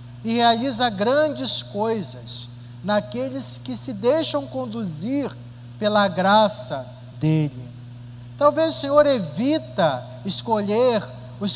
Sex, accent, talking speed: male, Brazilian, 95 wpm